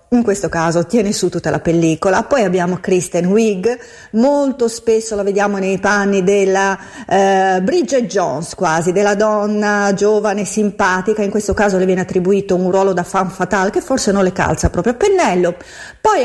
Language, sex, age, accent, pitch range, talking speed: Italian, female, 40-59, native, 185-245 Hz, 175 wpm